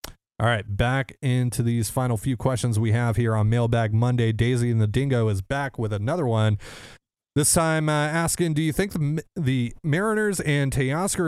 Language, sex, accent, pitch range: English, male, American, 100-130 Hz